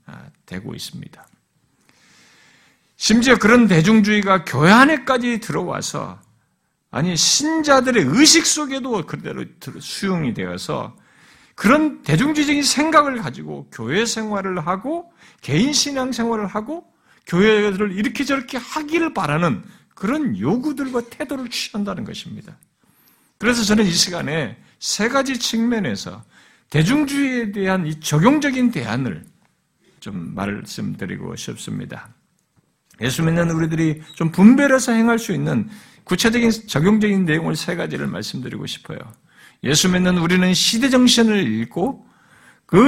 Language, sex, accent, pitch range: Korean, male, native, 180-250 Hz